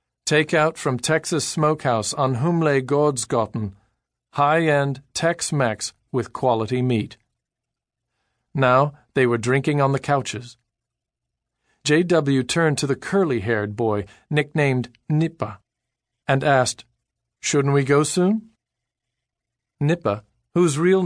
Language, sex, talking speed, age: English, male, 105 wpm, 40-59